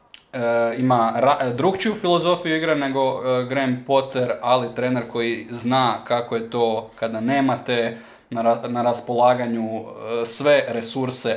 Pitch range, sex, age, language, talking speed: 115-125 Hz, male, 20-39, Croatian, 135 wpm